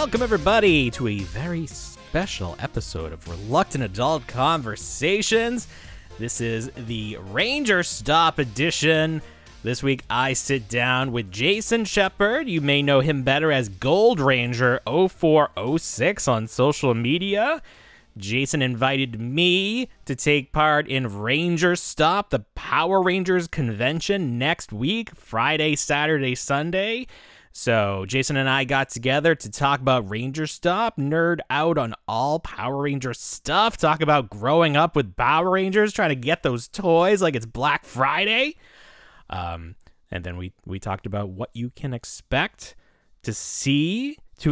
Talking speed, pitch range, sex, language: 140 wpm, 120-165 Hz, male, English